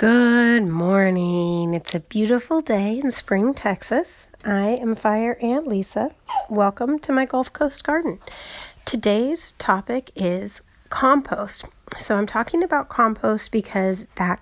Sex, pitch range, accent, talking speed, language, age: female, 185-240 Hz, American, 130 wpm, English, 40-59